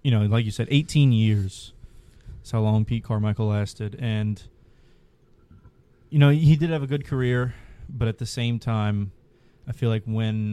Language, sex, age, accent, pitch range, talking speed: English, male, 20-39, American, 110-130 Hz, 180 wpm